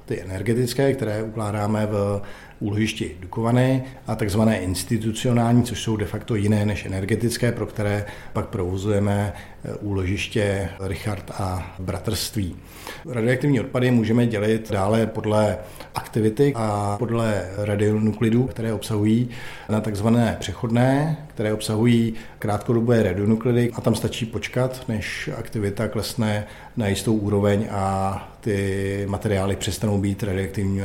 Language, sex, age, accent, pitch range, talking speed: Czech, male, 50-69, native, 100-115 Hz, 115 wpm